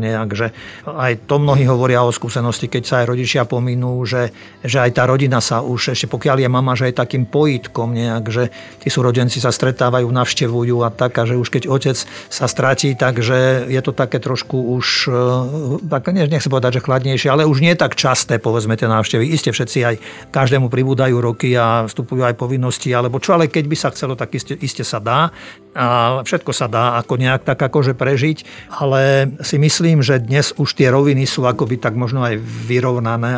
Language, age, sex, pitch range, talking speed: Slovak, 50-69, male, 120-140 Hz, 195 wpm